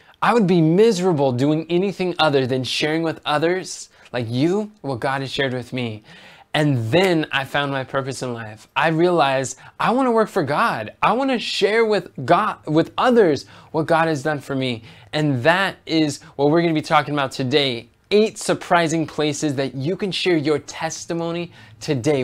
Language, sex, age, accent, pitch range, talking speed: English, male, 20-39, American, 135-175 Hz, 190 wpm